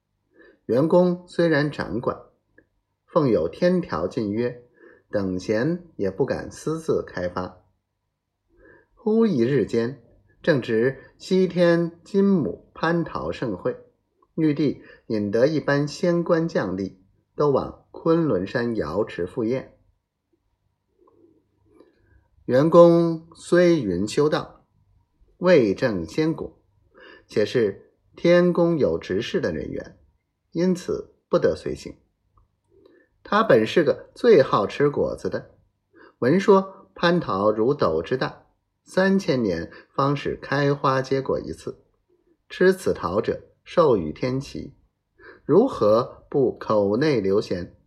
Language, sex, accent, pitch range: Chinese, male, native, 115-180 Hz